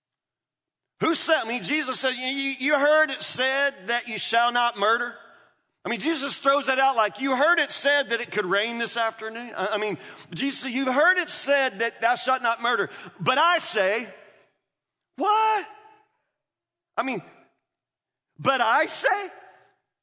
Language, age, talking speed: English, 40-59, 165 wpm